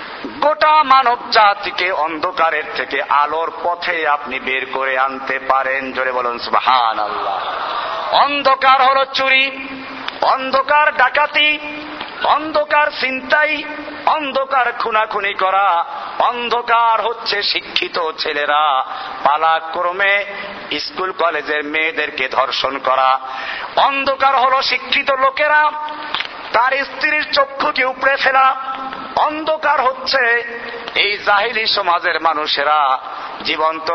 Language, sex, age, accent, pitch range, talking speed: Bengali, male, 50-69, native, 165-275 Hz, 85 wpm